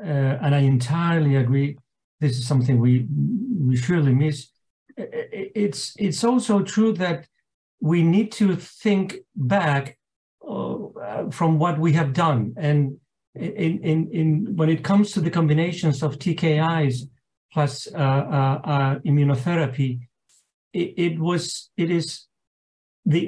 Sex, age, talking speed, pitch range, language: male, 50-69, 130 wpm, 145-200 Hz, English